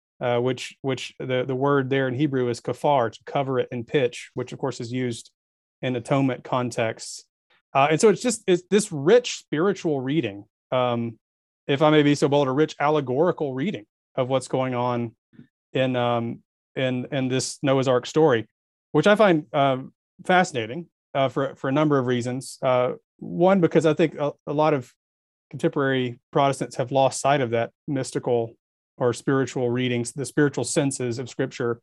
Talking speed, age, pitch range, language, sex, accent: 175 wpm, 30-49, 125-150 Hz, English, male, American